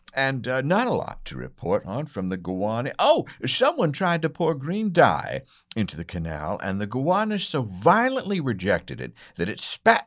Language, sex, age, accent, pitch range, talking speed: English, male, 60-79, American, 120-190 Hz, 185 wpm